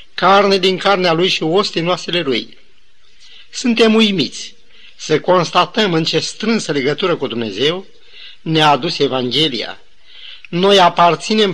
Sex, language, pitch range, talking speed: male, Romanian, 155-200 Hz, 120 wpm